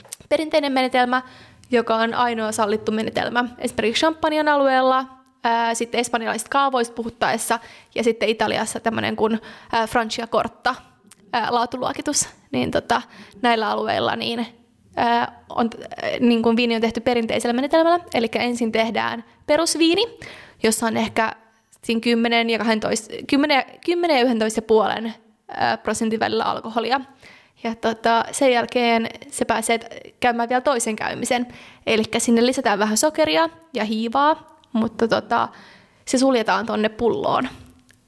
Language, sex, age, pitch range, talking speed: Finnish, female, 20-39, 225-270 Hz, 125 wpm